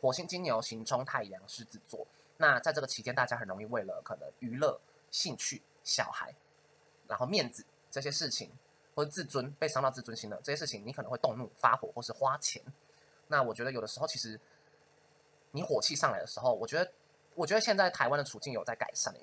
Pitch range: 120-155 Hz